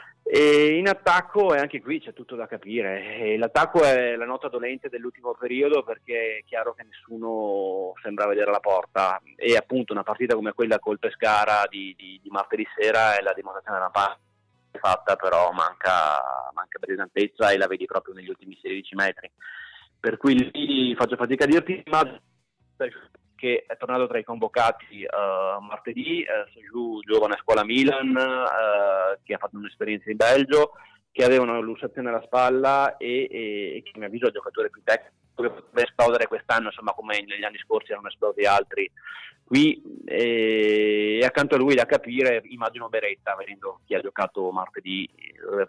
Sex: male